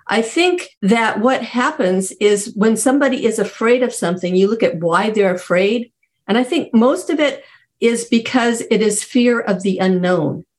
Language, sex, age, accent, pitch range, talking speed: English, female, 50-69, American, 195-255 Hz, 180 wpm